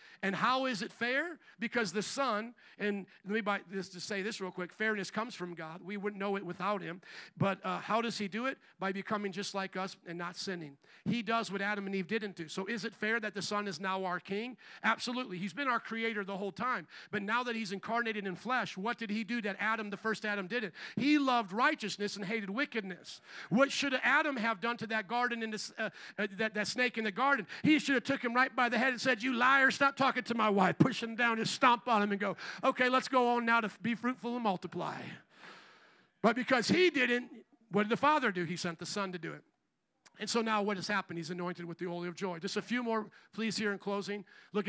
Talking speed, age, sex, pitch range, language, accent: 245 wpm, 50-69, male, 195-240 Hz, English, American